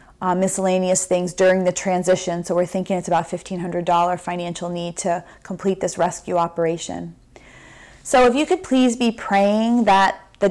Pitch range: 175-195 Hz